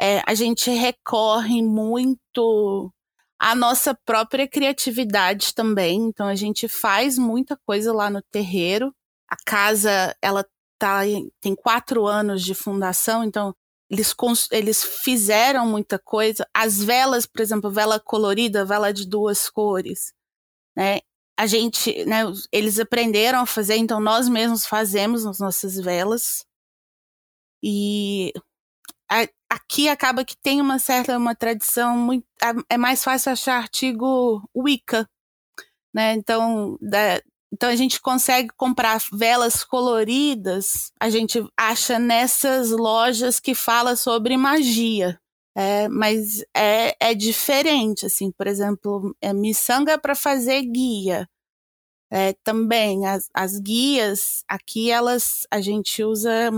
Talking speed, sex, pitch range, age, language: 120 wpm, female, 205-245 Hz, 20-39, Portuguese